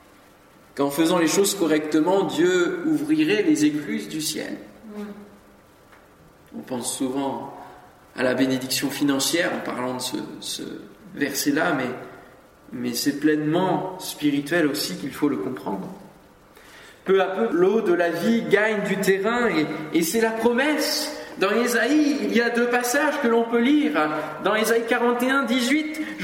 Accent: French